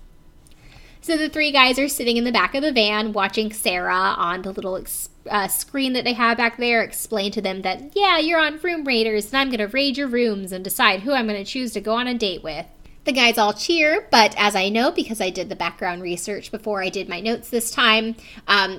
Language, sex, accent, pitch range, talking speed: English, female, American, 200-255 Hz, 240 wpm